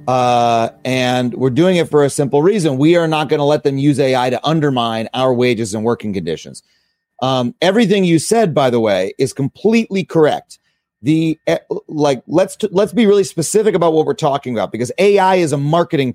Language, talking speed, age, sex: English, 195 wpm, 40-59, male